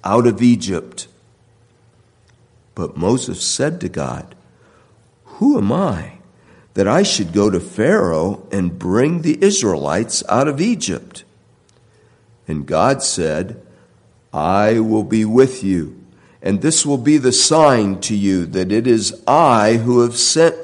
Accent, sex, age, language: American, male, 60-79, English